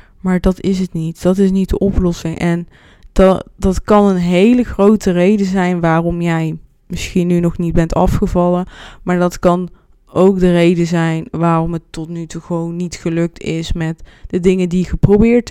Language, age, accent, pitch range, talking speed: Dutch, 20-39, Dutch, 170-195 Hz, 190 wpm